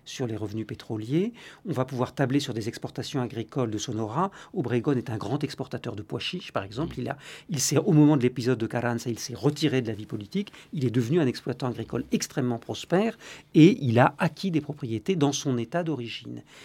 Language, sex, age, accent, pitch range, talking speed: French, male, 50-69, French, 120-155 Hz, 215 wpm